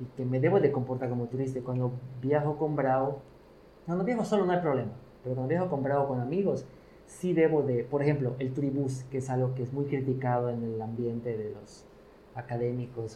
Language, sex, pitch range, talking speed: Spanish, male, 125-150 Hz, 210 wpm